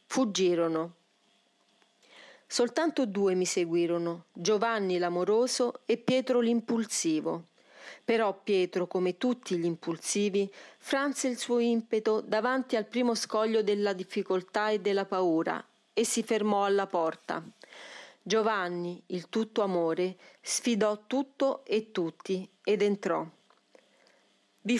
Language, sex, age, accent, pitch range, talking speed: Italian, female, 40-59, native, 185-230 Hz, 110 wpm